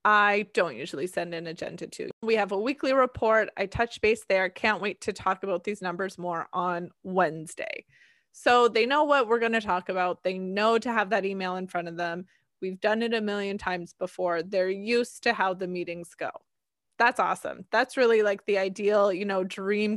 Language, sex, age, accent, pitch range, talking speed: English, female, 20-39, American, 185-225 Hz, 205 wpm